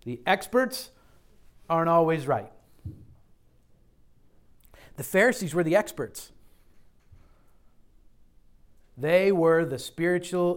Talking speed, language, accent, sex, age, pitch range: 80 wpm, English, American, male, 50-69, 115-170 Hz